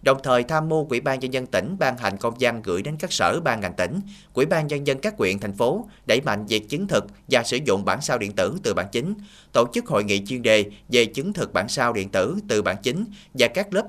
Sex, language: male, Vietnamese